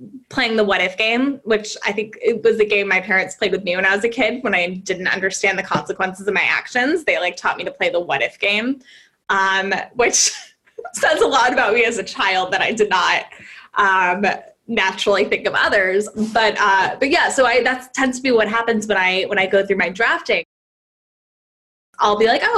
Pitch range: 190-235 Hz